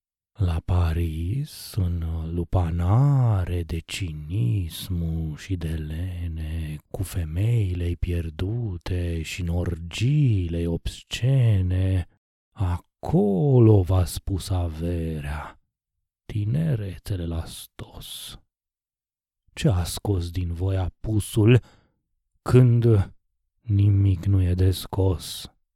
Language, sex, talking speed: Romanian, male, 75 wpm